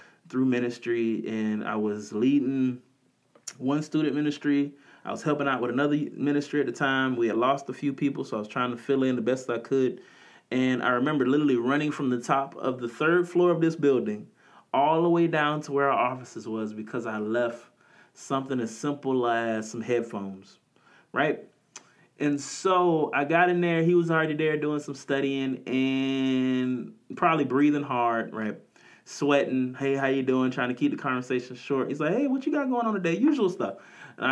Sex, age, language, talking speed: male, 30-49, English, 195 wpm